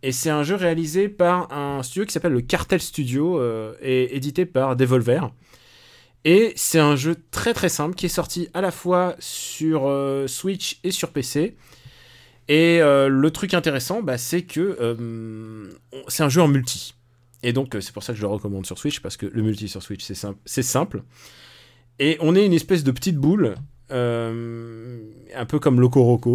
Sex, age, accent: male, 30-49, French